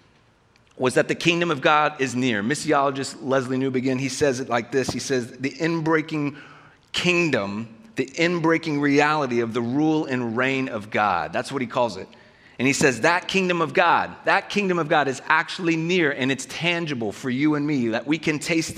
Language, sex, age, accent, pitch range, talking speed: English, male, 30-49, American, 130-165 Hz, 195 wpm